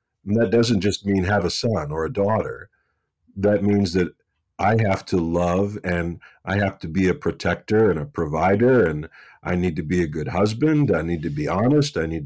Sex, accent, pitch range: male, American, 90-115 Hz